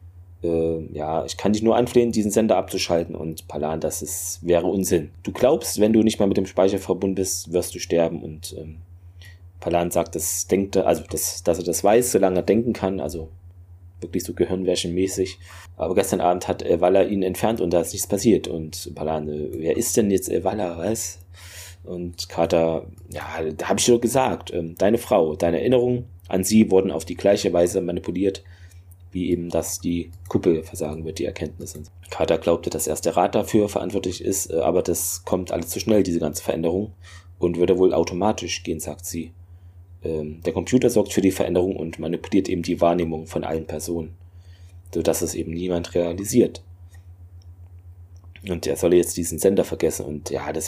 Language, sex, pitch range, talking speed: German, male, 85-95 Hz, 185 wpm